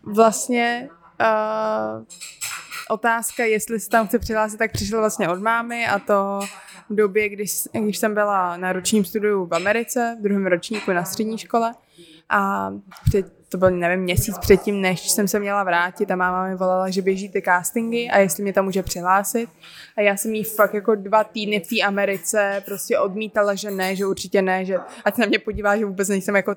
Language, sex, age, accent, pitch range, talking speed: Czech, female, 20-39, native, 190-215 Hz, 195 wpm